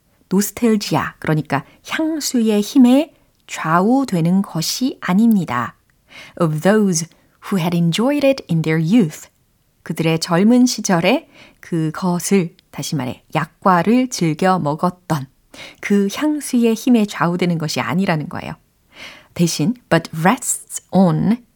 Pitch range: 165-240 Hz